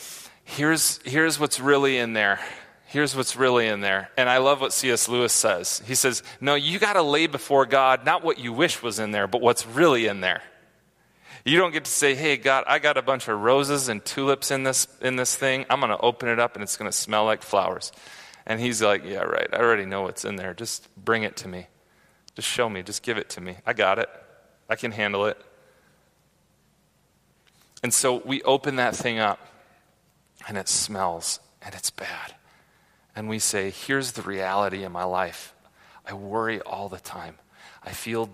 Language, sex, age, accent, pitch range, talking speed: English, male, 30-49, American, 100-135 Hz, 200 wpm